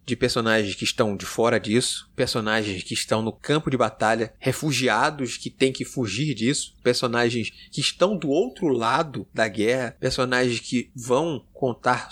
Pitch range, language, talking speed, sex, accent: 115-140 Hz, Portuguese, 160 wpm, male, Brazilian